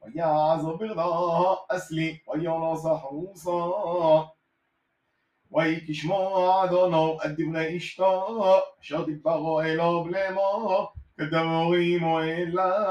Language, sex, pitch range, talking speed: Hebrew, male, 160-190 Hz, 70 wpm